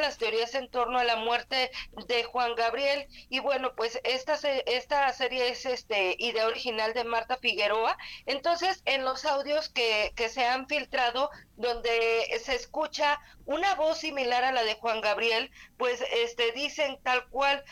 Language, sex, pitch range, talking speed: Spanish, female, 230-275 Hz, 165 wpm